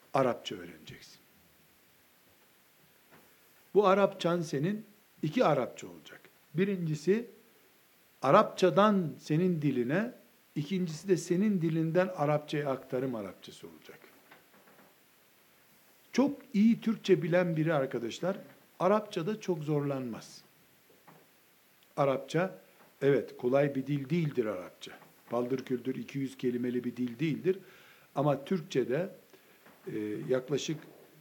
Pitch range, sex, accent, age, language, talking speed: 150-195 Hz, male, native, 60-79, Turkish, 90 wpm